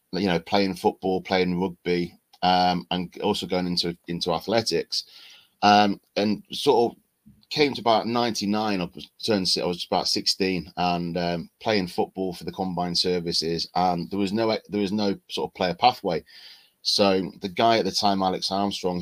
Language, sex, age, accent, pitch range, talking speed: English, male, 30-49, British, 90-100 Hz, 165 wpm